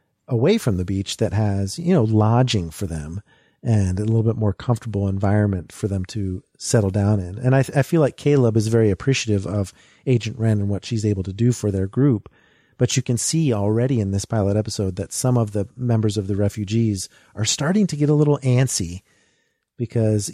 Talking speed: 210 wpm